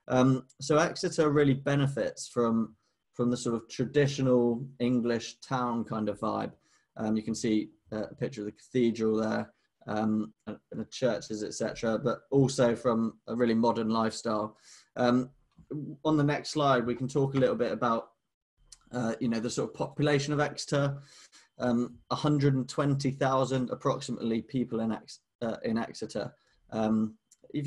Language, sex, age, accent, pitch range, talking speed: Russian, male, 20-39, British, 110-135 Hz, 160 wpm